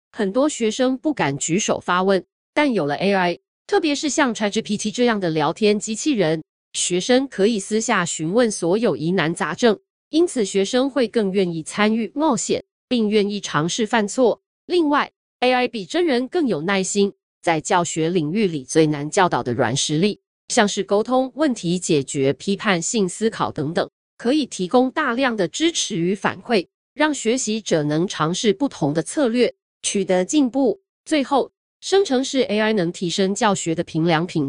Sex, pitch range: female, 175-250 Hz